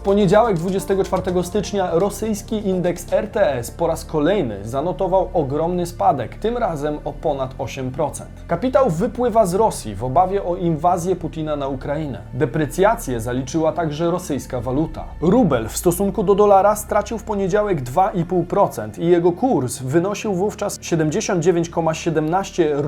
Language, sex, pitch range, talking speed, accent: Polish, male, 150-200 Hz, 130 wpm, native